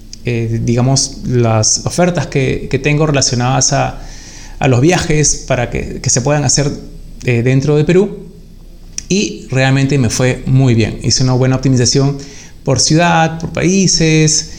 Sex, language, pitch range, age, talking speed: male, Spanish, 130-165 Hz, 30-49, 150 wpm